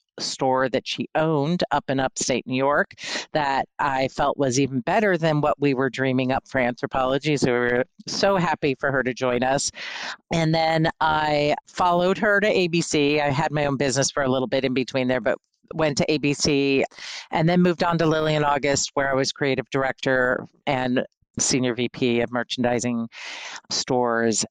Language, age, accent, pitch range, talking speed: English, 50-69, American, 135-165 Hz, 185 wpm